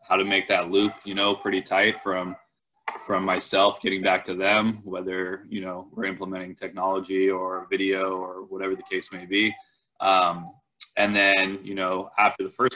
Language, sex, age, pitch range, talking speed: English, male, 20-39, 95-105 Hz, 180 wpm